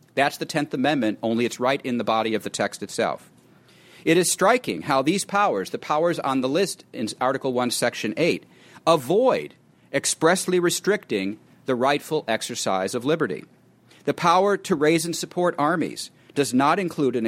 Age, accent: 40-59, American